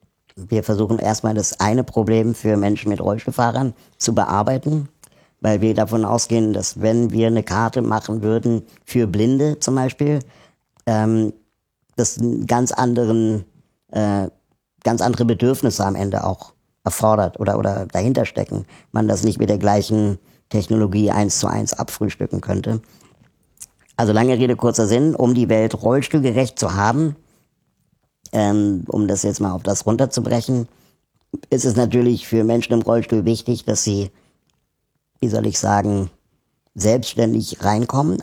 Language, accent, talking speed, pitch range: German, German, 140 wpm, 105-120 Hz